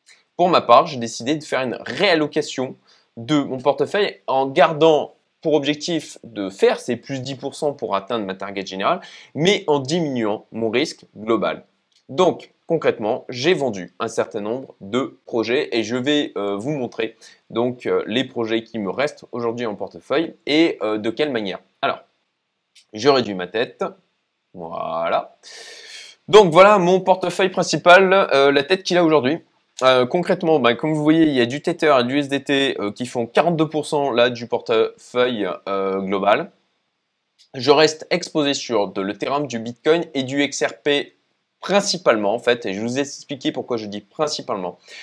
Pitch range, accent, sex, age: 110-155 Hz, French, male, 20-39